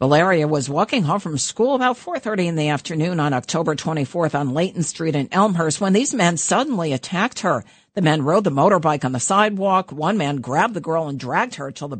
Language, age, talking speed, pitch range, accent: English, 50-69, 215 wpm, 150-200 Hz, American